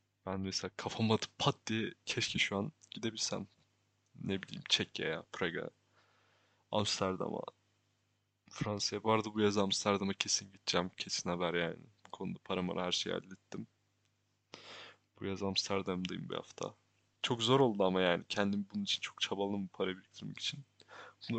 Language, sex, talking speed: Turkish, male, 145 wpm